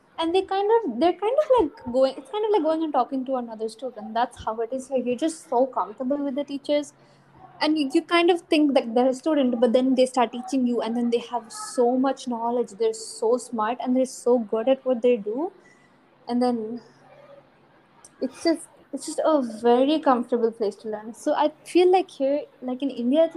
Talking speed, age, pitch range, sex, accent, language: 215 wpm, 20-39, 245-320 Hz, female, Indian, English